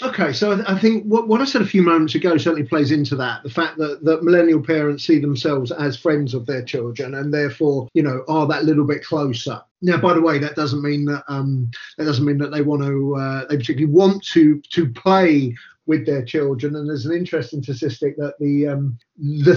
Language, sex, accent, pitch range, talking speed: English, male, British, 145-185 Hz, 220 wpm